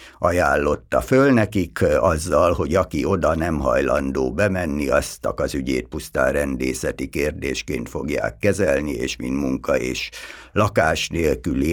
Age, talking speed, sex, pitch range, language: 60-79, 125 wpm, male, 80-115 Hz, Hungarian